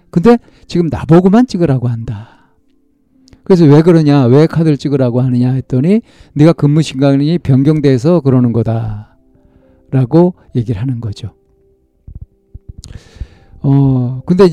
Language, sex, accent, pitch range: Korean, male, native, 110-155 Hz